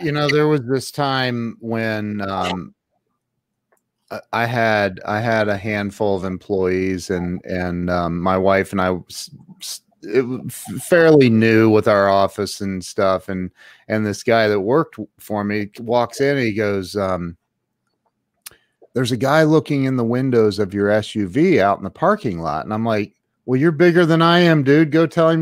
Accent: American